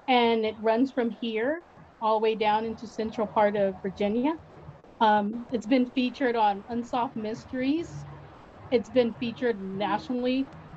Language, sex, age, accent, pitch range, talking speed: English, female, 30-49, American, 205-240 Hz, 140 wpm